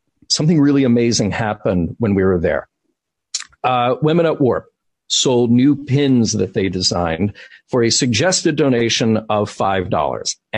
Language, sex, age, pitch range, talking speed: English, male, 40-59, 110-130 Hz, 135 wpm